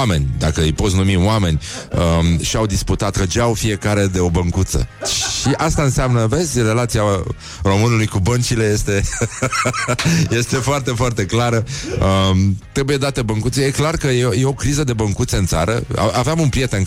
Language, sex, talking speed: Romanian, male, 160 wpm